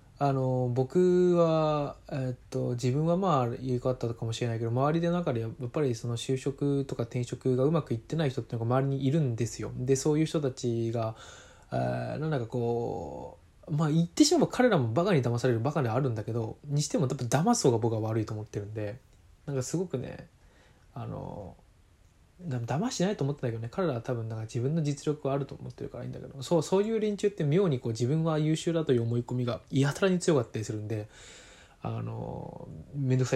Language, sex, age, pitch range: Japanese, male, 20-39, 115-145 Hz